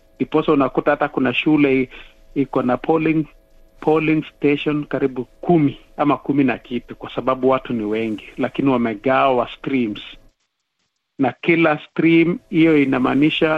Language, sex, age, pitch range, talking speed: Swahili, male, 50-69, 120-155 Hz, 130 wpm